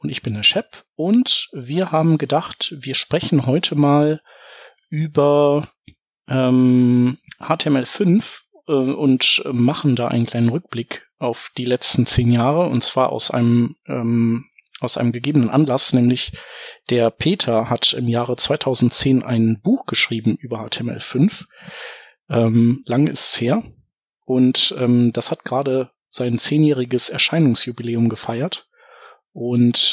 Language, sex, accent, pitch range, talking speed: German, male, German, 120-150 Hz, 125 wpm